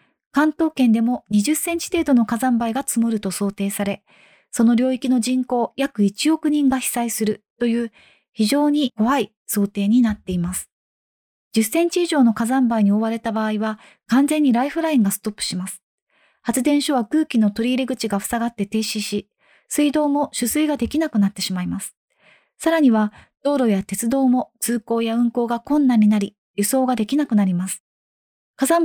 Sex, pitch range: female, 210-275 Hz